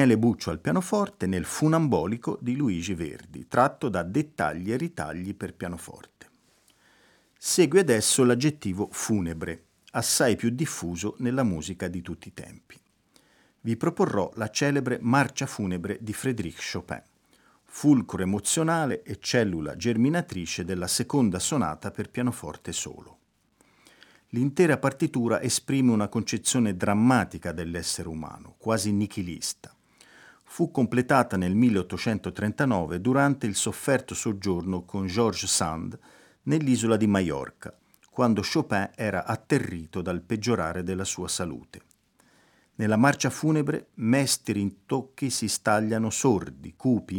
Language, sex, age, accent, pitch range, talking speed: Italian, male, 40-59, native, 95-130 Hz, 115 wpm